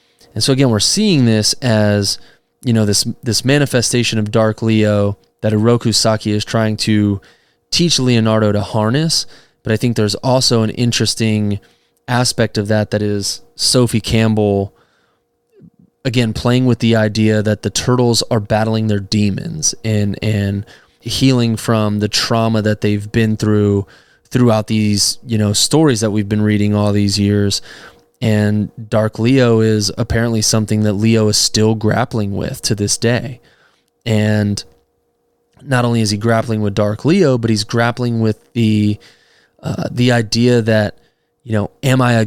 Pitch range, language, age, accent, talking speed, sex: 105-120 Hz, English, 20-39, American, 160 wpm, male